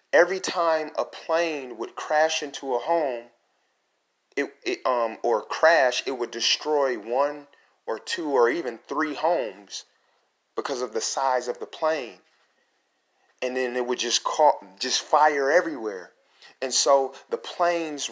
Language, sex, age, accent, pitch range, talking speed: English, male, 30-49, American, 135-175 Hz, 145 wpm